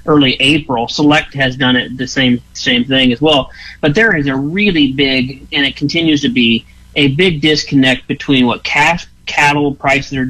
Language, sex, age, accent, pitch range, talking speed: English, male, 40-59, American, 140-170 Hz, 185 wpm